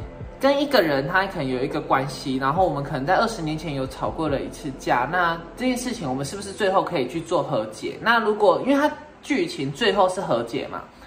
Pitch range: 140-195 Hz